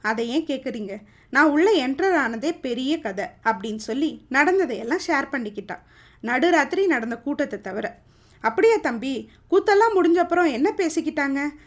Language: Tamil